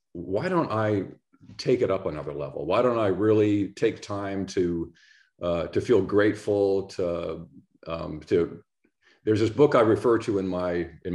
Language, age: English, 50-69